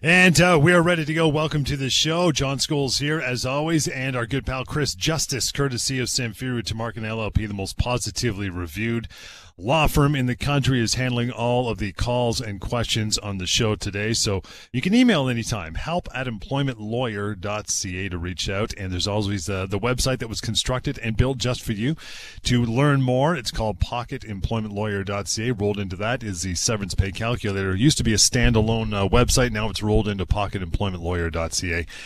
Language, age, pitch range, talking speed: English, 30-49, 100-130 Hz, 195 wpm